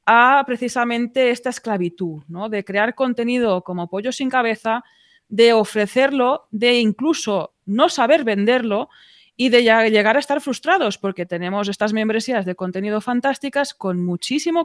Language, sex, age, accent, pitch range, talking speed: Spanish, female, 20-39, Spanish, 185-255 Hz, 135 wpm